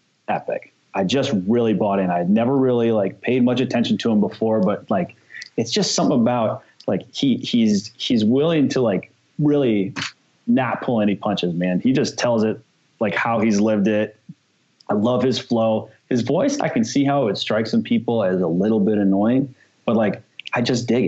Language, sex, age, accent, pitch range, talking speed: English, male, 30-49, American, 105-135 Hz, 195 wpm